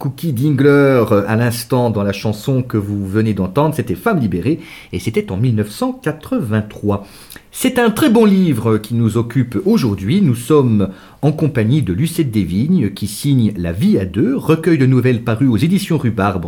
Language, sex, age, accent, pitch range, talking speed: French, male, 50-69, French, 115-185 Hz, 180 wpm